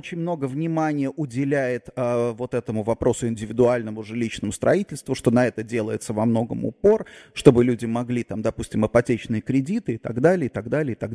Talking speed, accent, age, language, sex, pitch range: 170 wpm, native, 30-49, Russian, male, 120-155 Hz